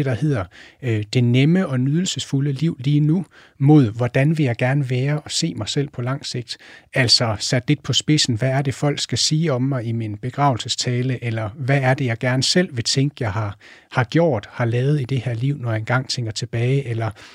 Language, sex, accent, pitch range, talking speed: Danish, male, native, 120-150 Hz, 220 wpm